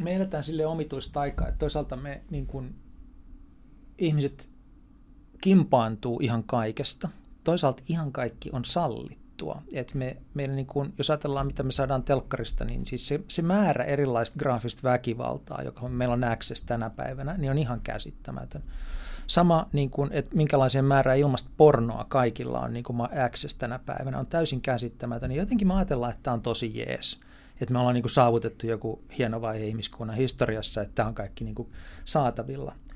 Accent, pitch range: native, 120-155 Hz